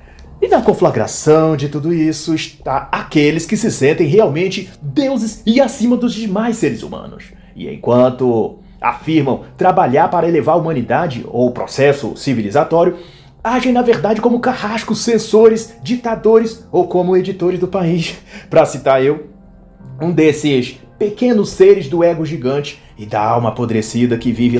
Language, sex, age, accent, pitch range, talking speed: Portuguese, male, 30-49, Brazilian, 140-220 Hz, 145 wpm